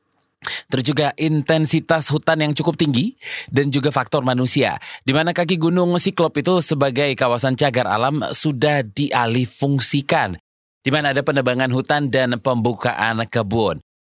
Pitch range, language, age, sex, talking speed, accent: 125-165 Hz, Indonesian, 20-39, male, 125 wpm, native